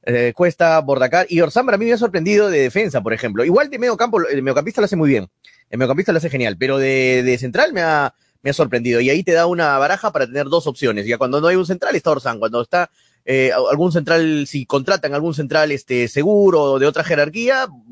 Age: 30-49